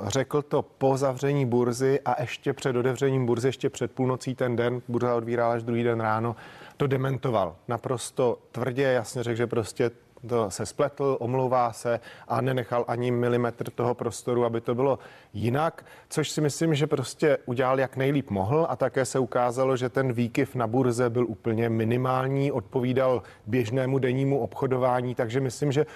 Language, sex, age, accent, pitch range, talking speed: Czech, male, 30-49, native, 120-135 Hz, 165 wpm